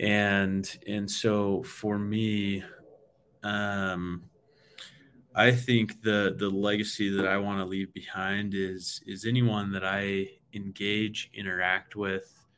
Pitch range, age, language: 95-105 Hz, 20-39, English